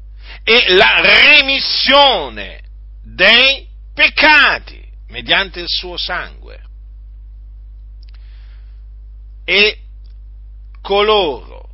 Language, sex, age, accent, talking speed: Italian, male, 50-69, native, 55 wpm